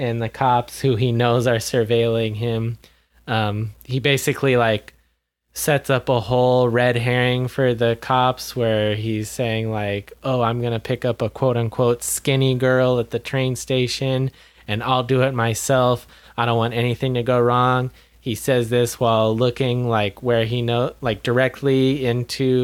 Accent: American